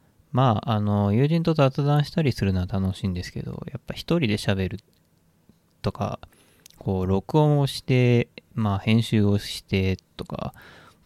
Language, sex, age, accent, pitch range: Japanese, male, 20-39, native, 95-135 Hz